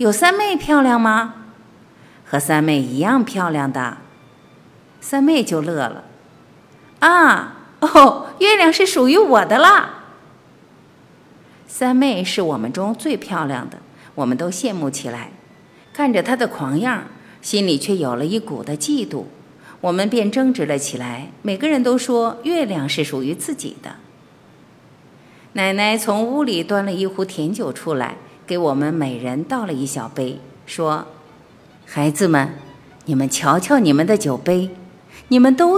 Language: Chinese